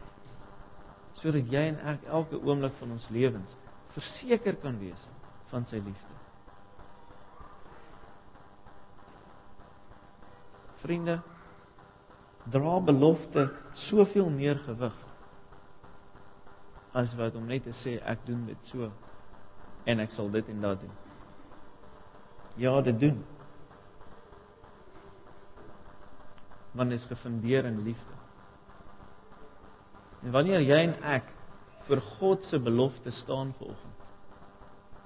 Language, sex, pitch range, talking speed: English, male, 100-135 Hz, 100 wpm